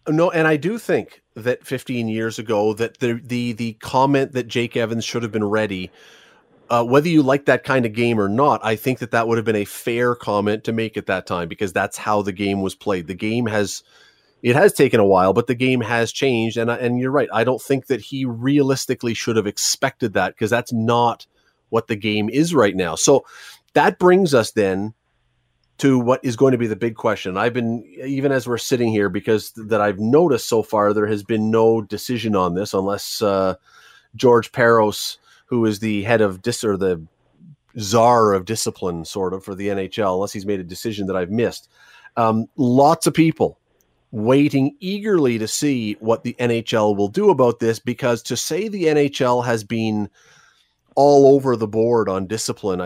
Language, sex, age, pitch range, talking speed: English, male, 30-49, 105-125 Hz, 200 wpm